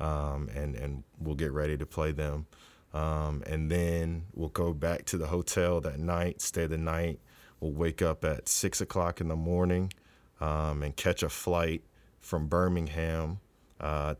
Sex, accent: male, American